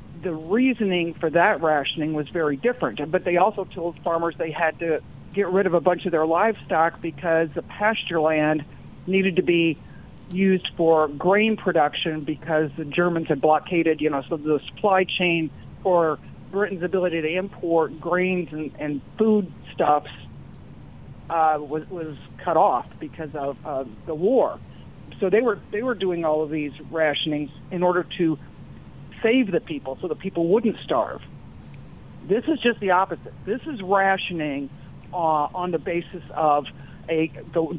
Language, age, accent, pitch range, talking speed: English, 50-69, American, 155-185 Hz, 160 wpm